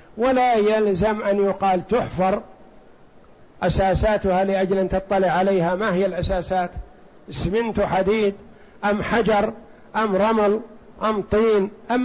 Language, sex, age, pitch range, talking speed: Arabic, male, 60-79, 190-220 Hz, 110 wpm